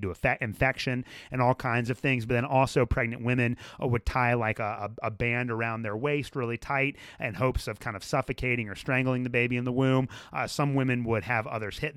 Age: 30-49